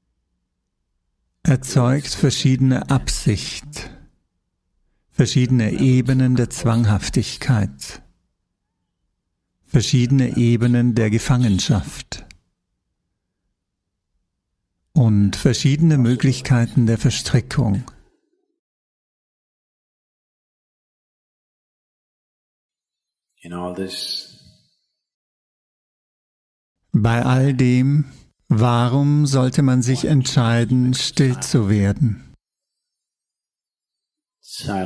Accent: German